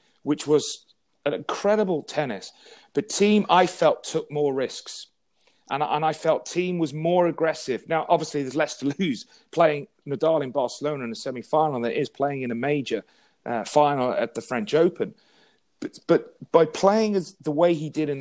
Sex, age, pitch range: male, 40-59, 140-180 Hz